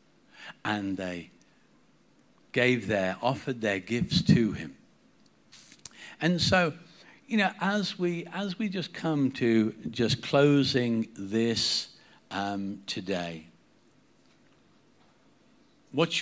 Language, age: English, 50-69